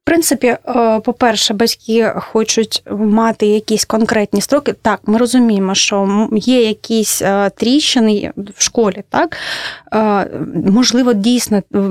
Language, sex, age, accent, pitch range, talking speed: Russian, female, 20-39, native, 205-250 Hz, 105 wpm